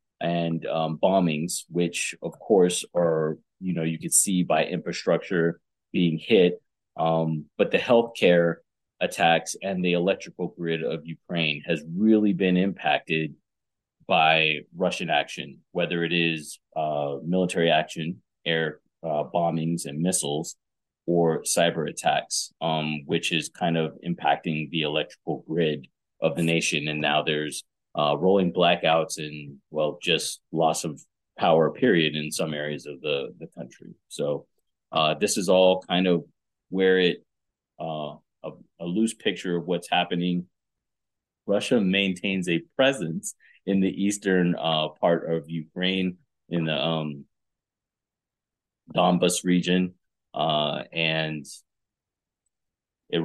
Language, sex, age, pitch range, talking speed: English, male, 30-49, 80-90 Hz, 130 wpm